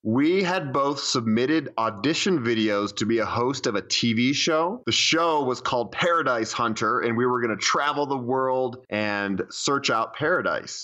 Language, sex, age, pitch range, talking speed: English, male, 30-49, 110-145 Hz, 170 wpm